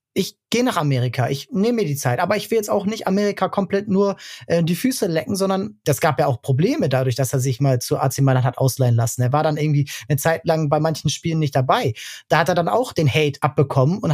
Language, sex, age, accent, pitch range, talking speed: German, male, 30-49, German, 135-175 Hz, 255 wpm